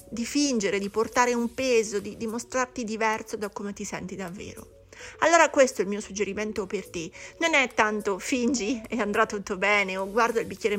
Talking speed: 190 wpm